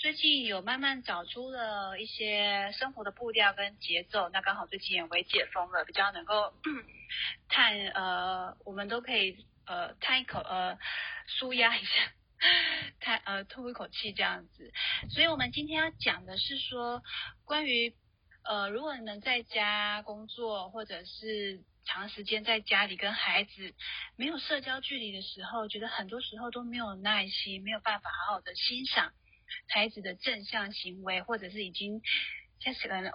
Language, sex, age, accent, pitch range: Chinese, female, 30-49, native, 195-240 Hz